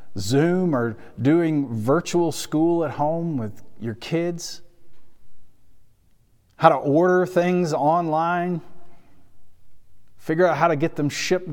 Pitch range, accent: 115-165 Hz, American